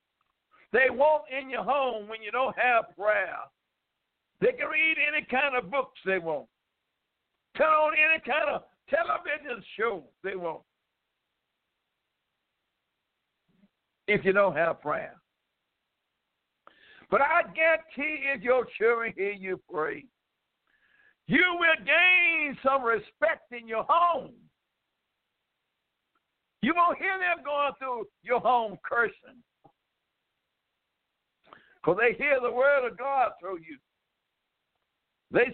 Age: 60-79